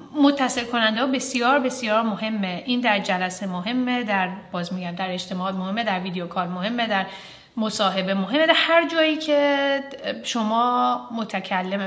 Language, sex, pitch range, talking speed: Persian, female, 190-245 Hz, 145 wpm